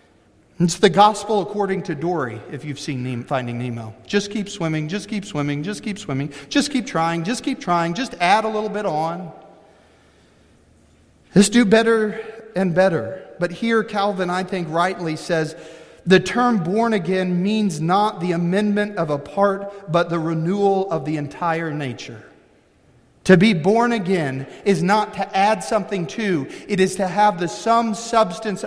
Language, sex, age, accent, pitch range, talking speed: English, male, 40-59, American, 160-205 Hz, 165 wpm